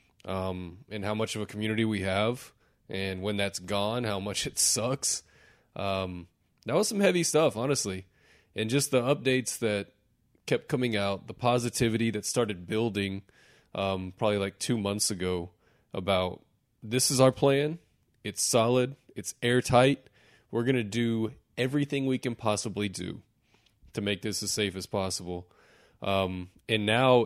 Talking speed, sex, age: 155 wpm, male, 20-39